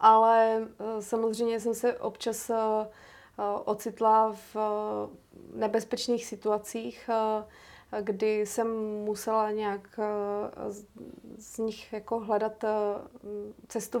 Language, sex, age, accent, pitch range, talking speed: Czech, female, 30-49, native, 210-220 Hz, 75 wpm